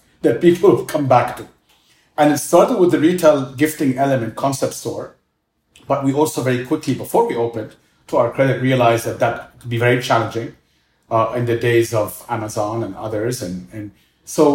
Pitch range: 115-145 Hz